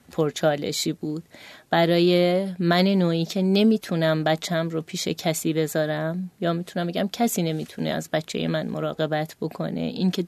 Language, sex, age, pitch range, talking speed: Persian, female, 30-49, 160-205 Hz, 140 wpm